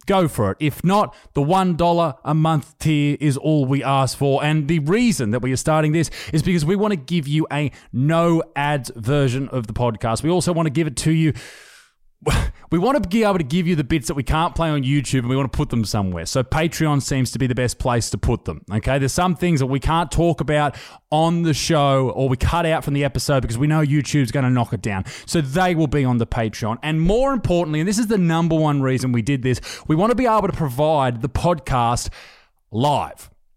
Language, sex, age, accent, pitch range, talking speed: English, male, 20-39, Australian, 130-170 Hz, 245 wpm